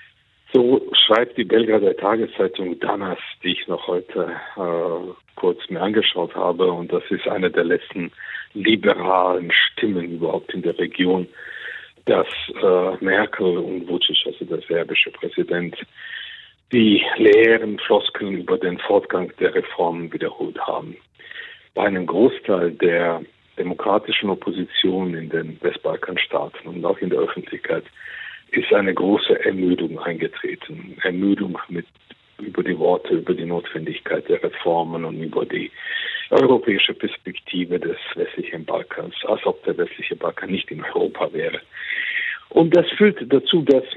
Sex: male